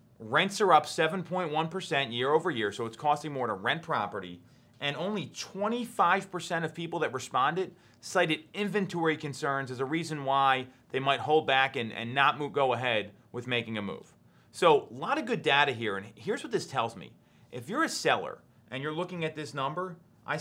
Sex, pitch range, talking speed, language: male, 125-170 Hz, 185 wpm, English